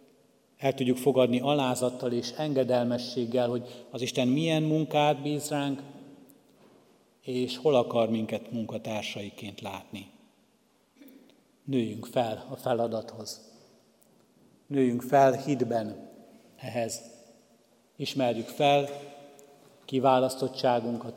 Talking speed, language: 85 wpm, Hungarian